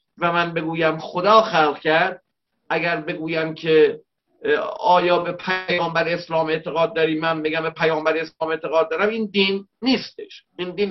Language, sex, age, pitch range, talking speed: Persian, male, 50-69, 170-220 Hz, 150 wpm